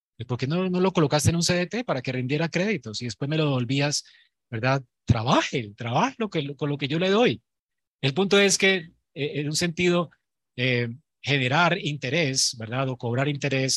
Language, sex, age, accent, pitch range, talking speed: Spanish, male, 30-49, Colombian, 130-175 Hz, 190 wpm